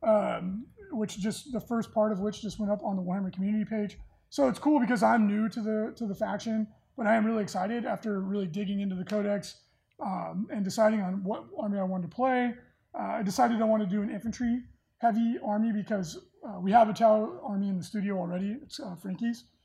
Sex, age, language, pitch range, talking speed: male, 20-39, English, 195-230 Hz, 225 wpm